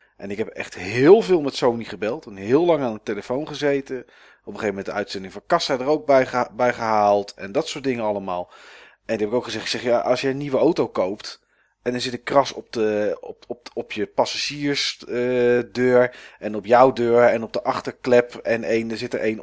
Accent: Dutch